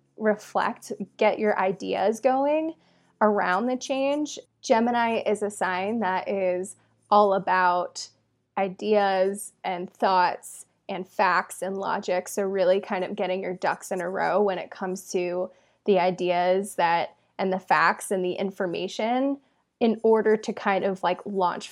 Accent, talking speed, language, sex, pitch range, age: American, 145 wpm, English, female, 185-215 Hz, 20-39